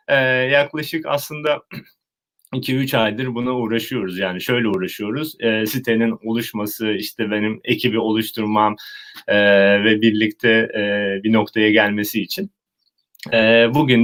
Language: Turkish